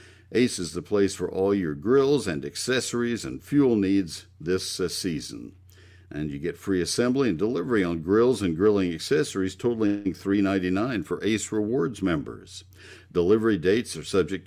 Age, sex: 60-79, male